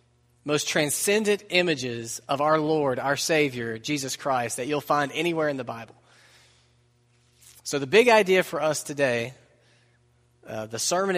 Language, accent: English, American